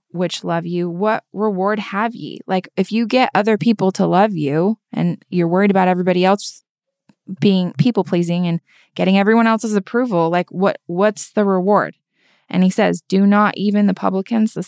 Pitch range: 175-210 Hz